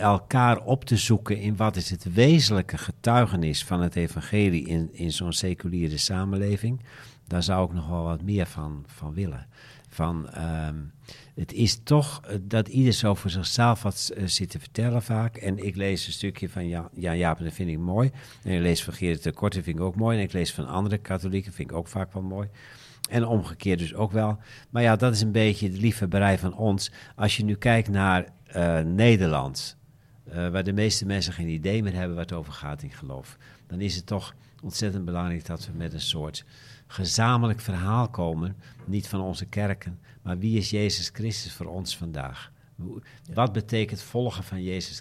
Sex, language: male, Dutch